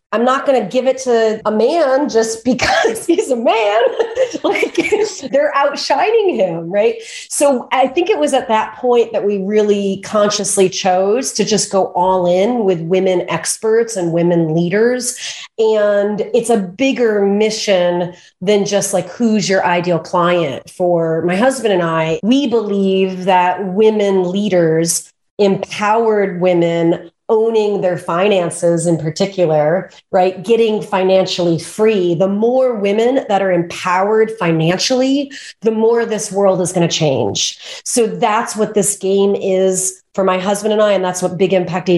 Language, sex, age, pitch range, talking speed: English, female, 30-49, 180-230 Hz, 155 wpm